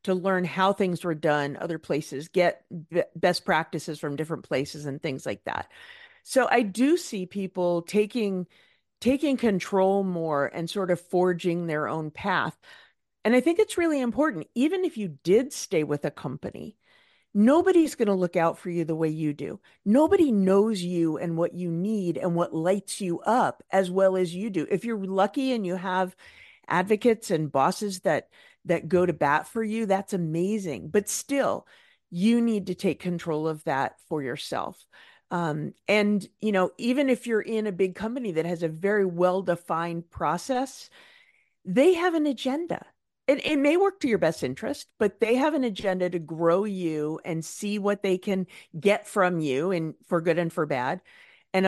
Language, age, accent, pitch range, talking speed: English, 40-59, American, 170-230 Hz, 180 wpm